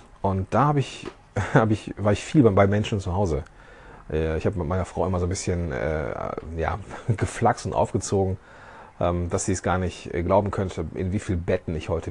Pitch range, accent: 95-120 Hz, German